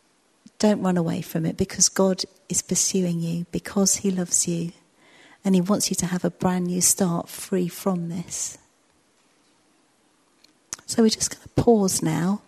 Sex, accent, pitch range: female, British, 180-200 Hz